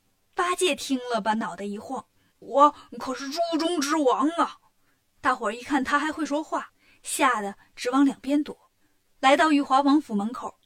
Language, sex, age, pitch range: Chinese, female, 20-39, 210-295 Hz